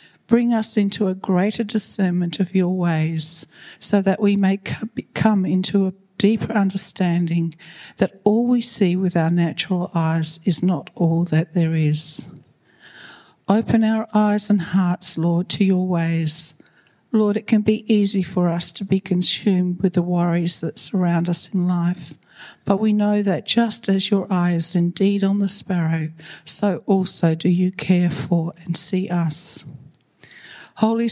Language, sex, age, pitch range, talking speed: English, female, 60-79, 170-205 Hz, 155 wpm